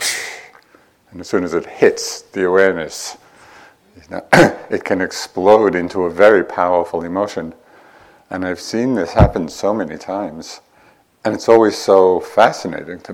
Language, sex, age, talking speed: English, male, 50-69, 135 wpm